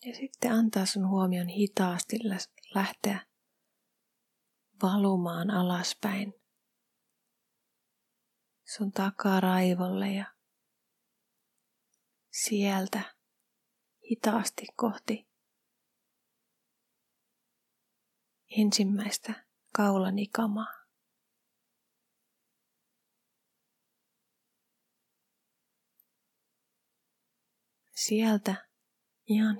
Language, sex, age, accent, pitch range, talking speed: Finnish, female, 30-49, native, 195-230 Hz, 40 wpm